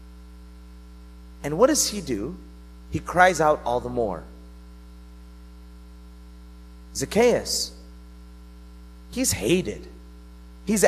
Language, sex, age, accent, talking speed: English, male, 30-49, American, 85 wpm